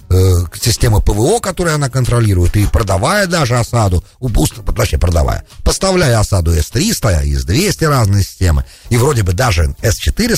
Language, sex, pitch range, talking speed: English, male, 100-150 Hz, 140 wpm